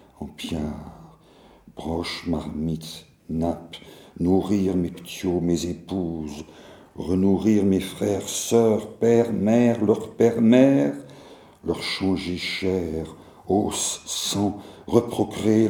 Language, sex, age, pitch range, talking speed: French, male, 60-79, 80-100 Hz, 95 wpm